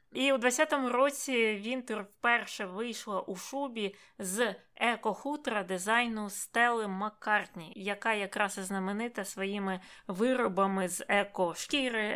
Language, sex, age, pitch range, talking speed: Ukrainian, female, 20-39, 190-225 Hz, 110 wpm